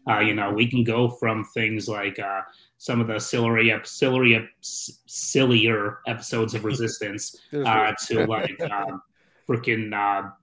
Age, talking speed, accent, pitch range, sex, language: 30-49, 130 wpm, American, 115-135 Hz, male, English